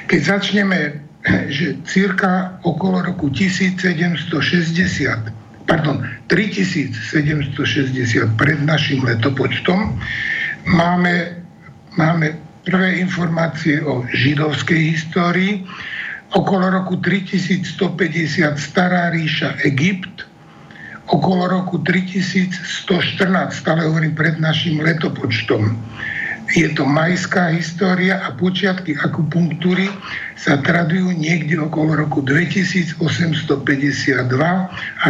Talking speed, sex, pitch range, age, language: 80 wpm, male, 150-180 Hz, 60-79, Slovak